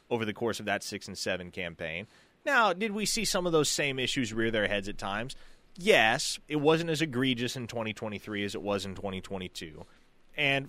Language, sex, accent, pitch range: English, male, American, 110-155 Hz